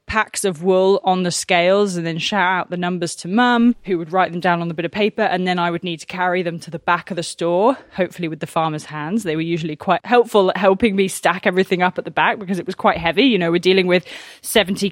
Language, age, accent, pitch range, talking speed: English, 20-39, British, 175-225 Hz, 275 wpm